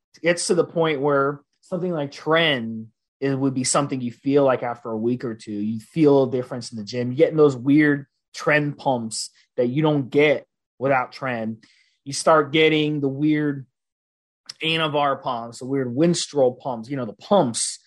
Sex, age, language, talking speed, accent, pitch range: male, 30-49, English, 185 wpm, American, 125-170 Hz